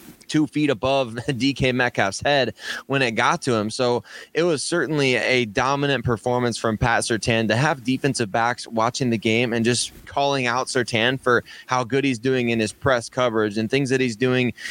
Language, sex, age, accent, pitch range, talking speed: English, male, 20-39, American, 120-145 Hz, 190 wpm